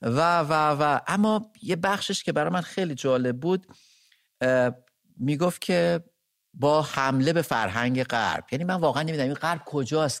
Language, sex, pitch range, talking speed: English, male, 125-165 Hz, 155 wpm